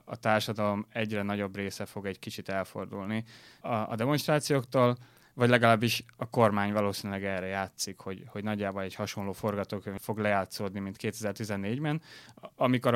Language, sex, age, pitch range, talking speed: Hungarian, male, 20-39, 100-120 Hz, 140 wpm